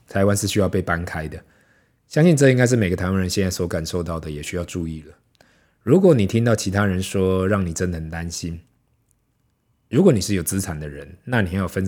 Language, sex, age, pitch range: Chinese, male, 20-39, 90-110 Hz